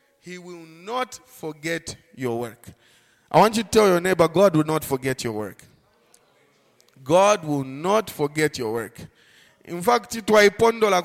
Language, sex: English, male